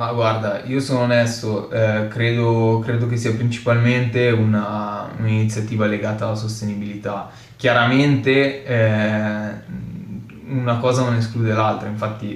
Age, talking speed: 20-39, 115 wpm